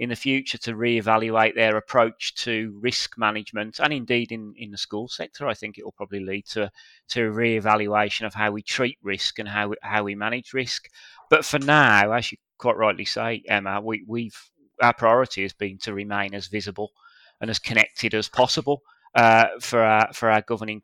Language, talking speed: English, 200 wpm